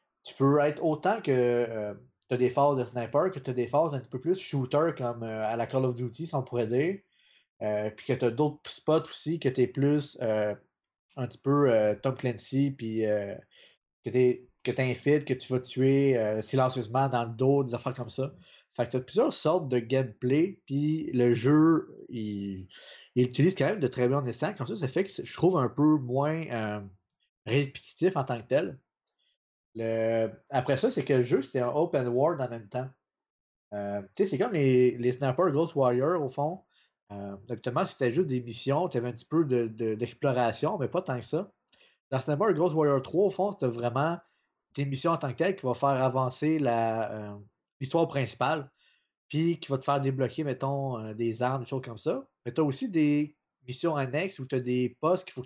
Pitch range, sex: 120-150 Hz, male